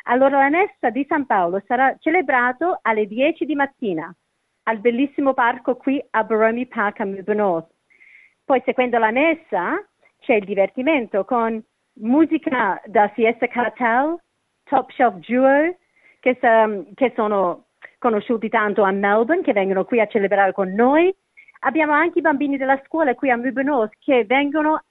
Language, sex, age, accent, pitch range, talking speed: Italian, female, 40-59, native, 220-300 Hz, 150 wpm